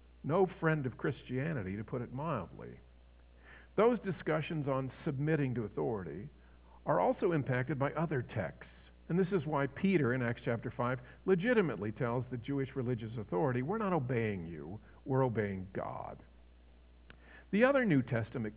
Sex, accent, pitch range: male, American, 100-160 Hz